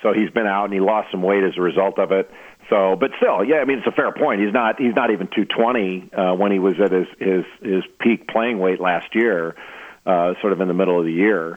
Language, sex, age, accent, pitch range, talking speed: English, male, 50-69, American, 95-110 Hz, 265 wpm